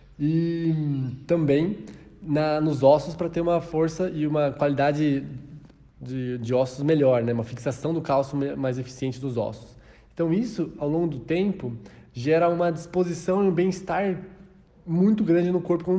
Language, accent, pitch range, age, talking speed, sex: Portuguese, Brazilian, 135-175 Hz, 20-39, 160 wpm, male